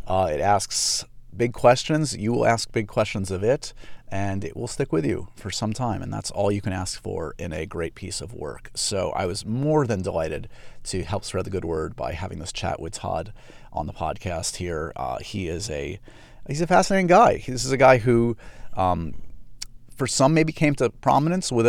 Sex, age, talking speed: male, 30-49, 215 wpm